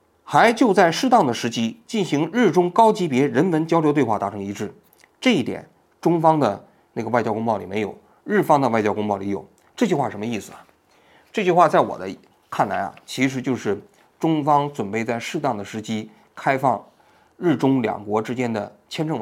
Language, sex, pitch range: Chinese, male, 115-175 Hz